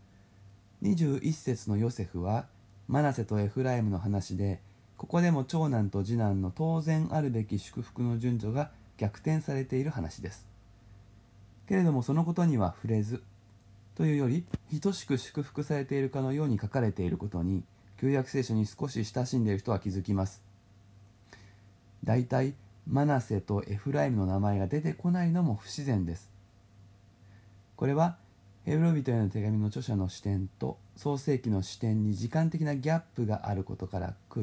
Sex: male